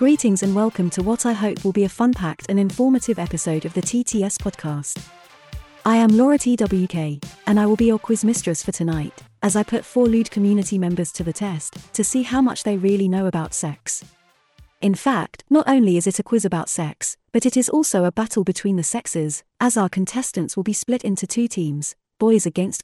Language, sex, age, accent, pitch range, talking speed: English, female, 30-49, British, 175-230 Hz, 215 wpm